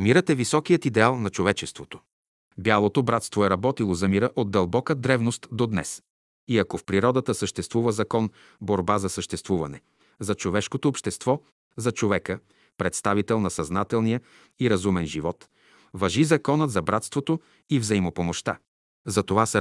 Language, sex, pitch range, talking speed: Bulgarian, male, 95-130 Hz, 140 wpm